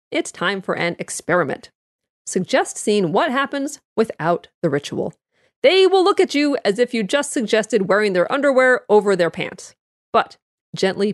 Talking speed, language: 160 wpm, English